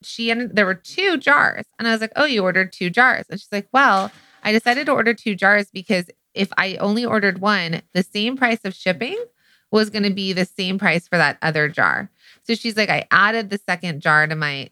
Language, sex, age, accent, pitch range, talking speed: English, female, 20-39, American, 165-215 Hz, 230 wpm